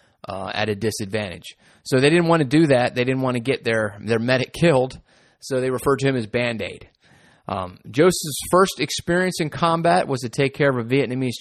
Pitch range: 110-135 Hz